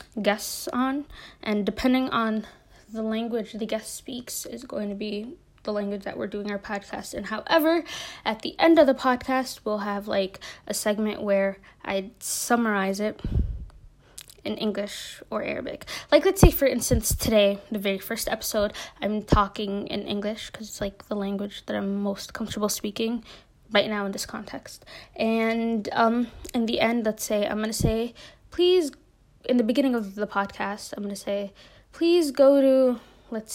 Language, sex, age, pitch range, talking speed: English, female, 20-39, 205-255 Hz, 175 wpm